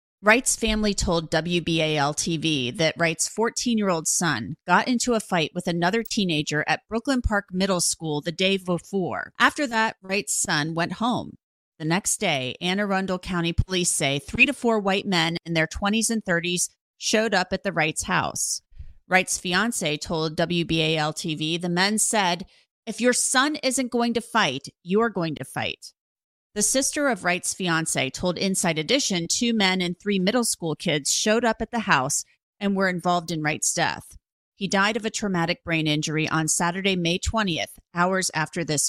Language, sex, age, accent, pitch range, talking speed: English, female, 30-49, American, 165-215 Hz, 170 wpm